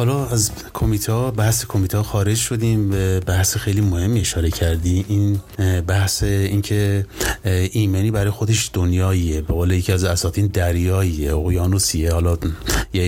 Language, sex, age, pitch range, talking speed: Persian, male, 30-49, 95-110 Hz, 135 wpm